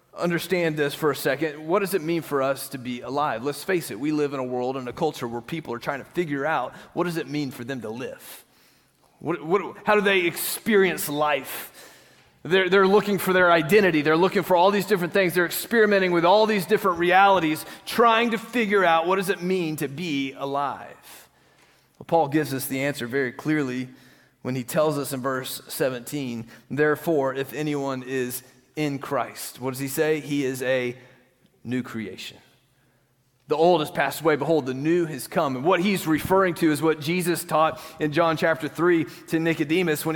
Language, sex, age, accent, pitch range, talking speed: English, male, 30-49, American, 145-200 Hz, 195 wpm